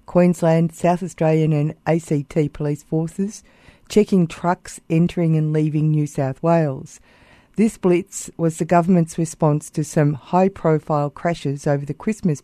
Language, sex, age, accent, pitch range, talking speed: English, female, 50-69, Australian, 150-180 Hz, 135 wpm